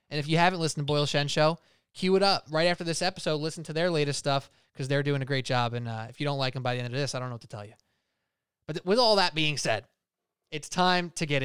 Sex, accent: male, American